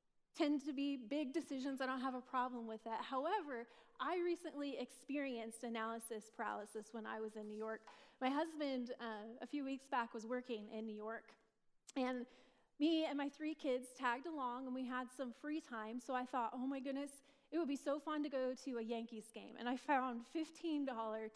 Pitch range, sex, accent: 245-310 Hz, female, American